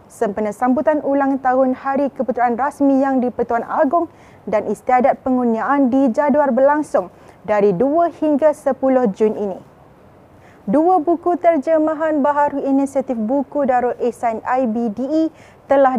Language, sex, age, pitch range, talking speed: Malay, female, 20-39, 245-280 Hz, 115 wpm